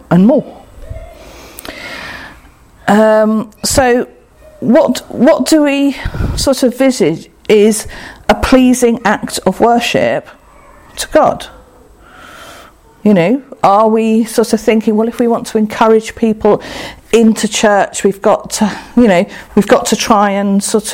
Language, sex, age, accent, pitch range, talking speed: English, female, 50-69, British, 200-240 Hz, 130 wpm